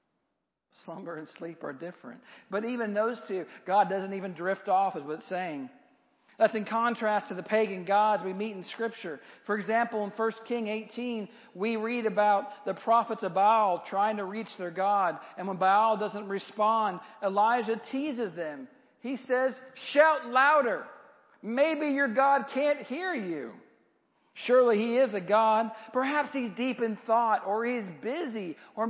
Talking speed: 165 wpm